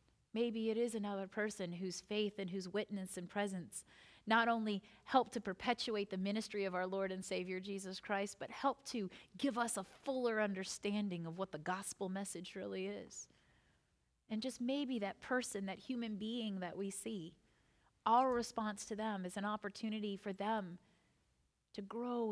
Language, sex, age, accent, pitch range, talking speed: English, female, 30-49, American, 190-235 Hz, 170 wpm